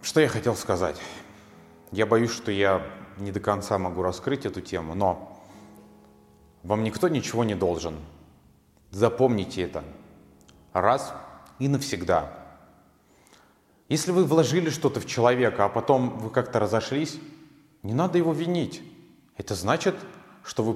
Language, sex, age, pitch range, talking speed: Russian, male, 30-49, 90-135 Hz, 130 wpm